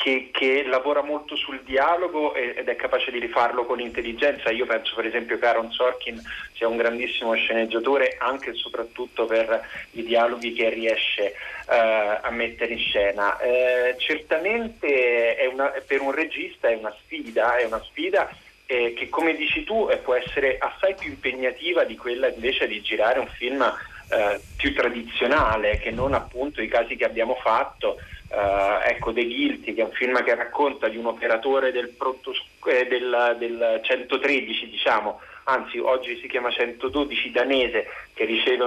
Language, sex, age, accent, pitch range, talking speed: Italian, male, 30-49, native, 115-165 Hz, 160 wpm